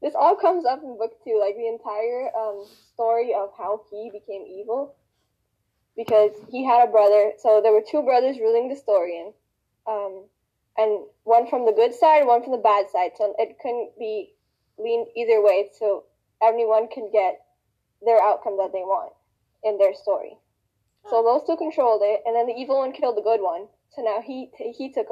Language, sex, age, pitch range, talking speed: English, female, 10-29, 205-250 Hz, 195 wpm